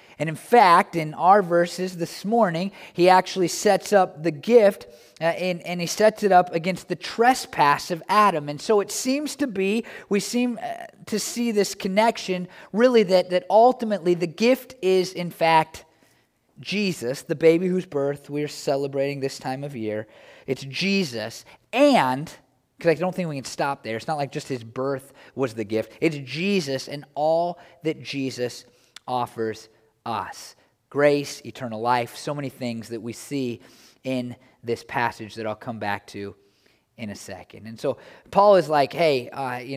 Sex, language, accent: male, English, American